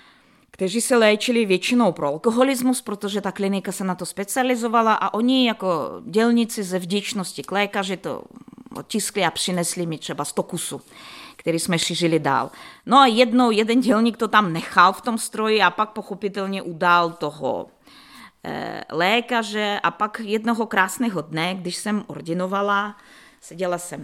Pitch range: 185-250 Hz